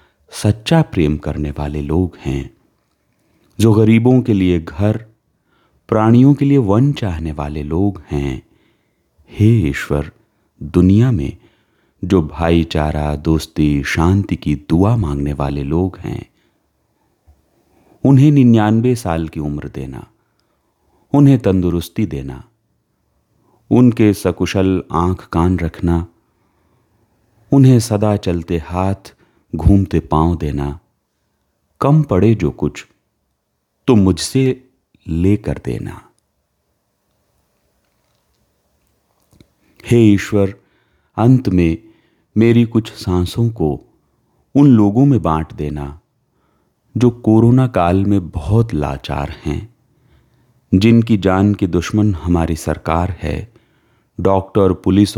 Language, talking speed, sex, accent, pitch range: Hindi, 100 wpm, male, native, 80-110 Hz